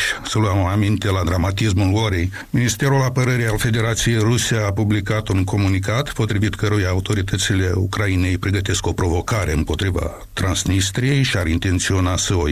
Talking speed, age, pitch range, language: 140 wpm, 60-79, 95-125 Hz, Romanian